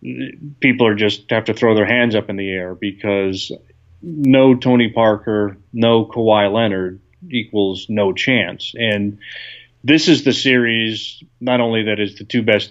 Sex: male